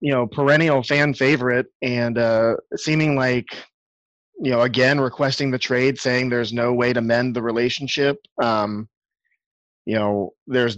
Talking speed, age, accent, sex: 150 wpm, 30-49, American, male